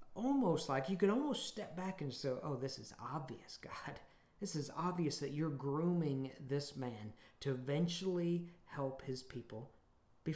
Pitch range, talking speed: 135-175 Hz, 160 wpm